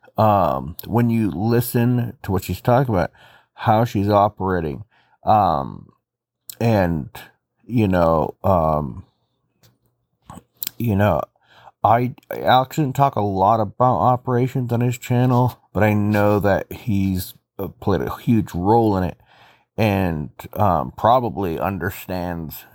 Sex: male